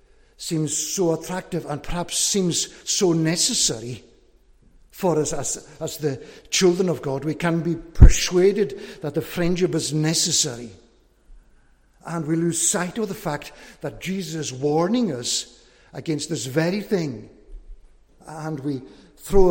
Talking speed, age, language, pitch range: 135 wpm, 60-79, English, 145-180 Hz